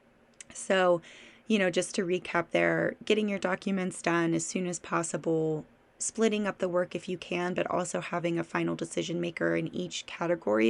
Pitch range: 160-185 Hz